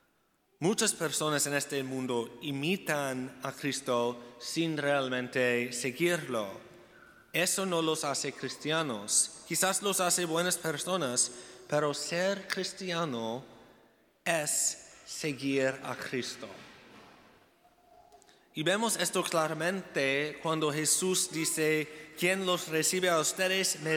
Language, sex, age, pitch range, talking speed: Spanish, male, 30-49, 140-180 Hz, 105 wpm